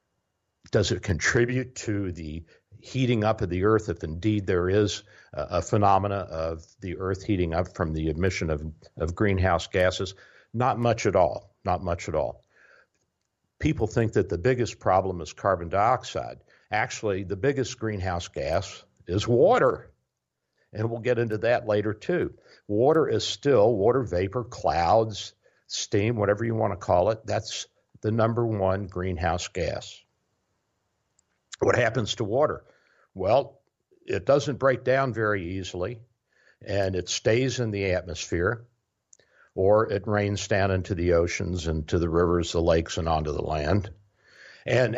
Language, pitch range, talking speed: English, 90-110 Hz, 150 wpm